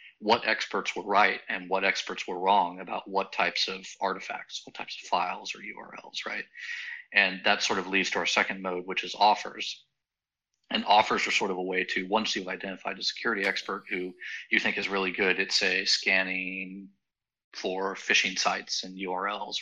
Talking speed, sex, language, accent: 185 wpm, male, English, American